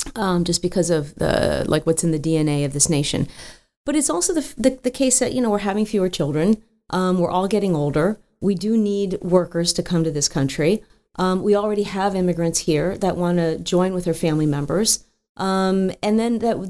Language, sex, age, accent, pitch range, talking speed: English, female, 40-59, American, 170-210 Hz, 210 wpm